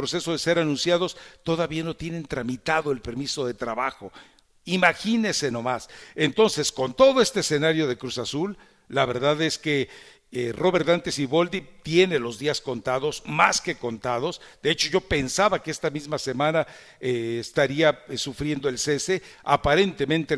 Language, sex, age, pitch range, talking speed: English, male, 60-79, 135-180 Hz, 155 wpm